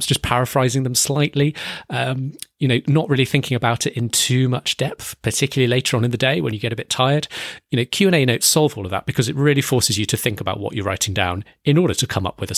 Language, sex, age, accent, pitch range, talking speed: English, male, 30-49, British, 105-145 Hz, 265 wpm